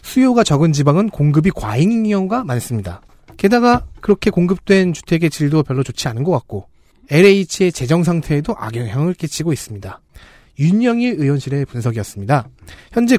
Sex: male